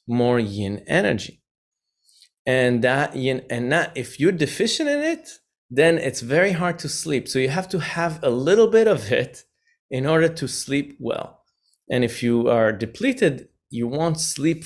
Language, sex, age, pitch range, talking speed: English, male, 30-49, 120-155 Hz, 170 wpm